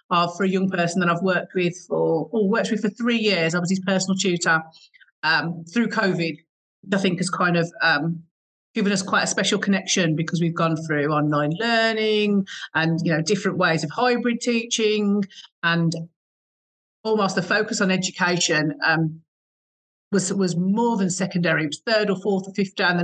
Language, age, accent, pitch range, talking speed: English, 40-59, British, 165-200 Hz, 190 wpm